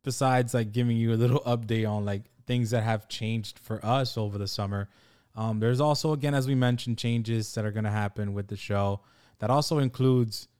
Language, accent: English, American